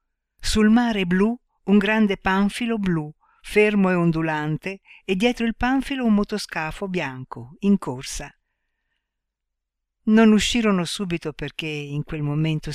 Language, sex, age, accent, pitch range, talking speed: Italian, female, 60-79, native, 155-210 Hz, 120 wpm